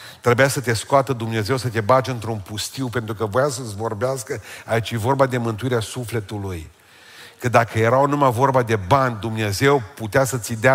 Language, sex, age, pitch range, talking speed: Romanian, male, 40-59, 105-125 Hz, 180 wpm